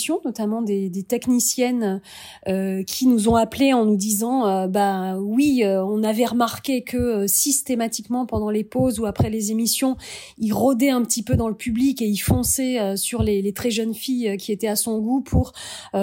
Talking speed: 205 wpm